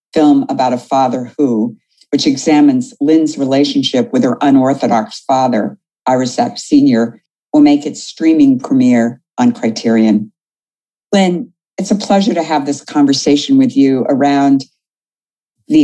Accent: American